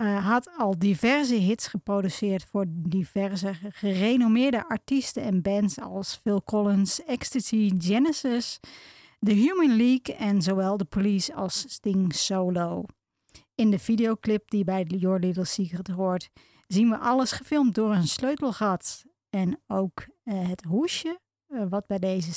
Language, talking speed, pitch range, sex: Dutch, 140 wpm, 190-240 Hz, female